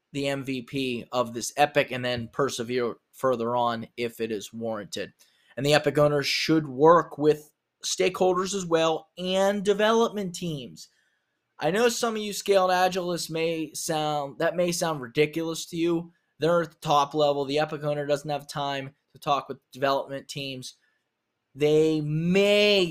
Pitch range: 135-170 Hz